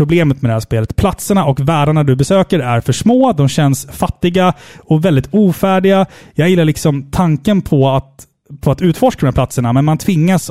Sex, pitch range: male, 130-175 Hz